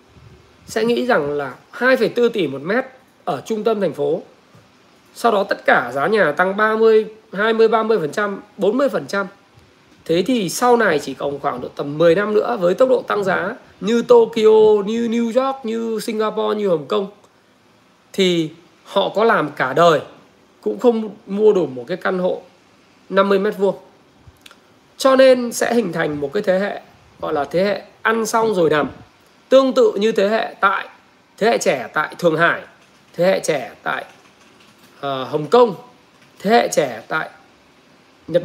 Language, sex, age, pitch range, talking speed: Vietnamese, male, 20-39, 175-235 Hz, 170 wpm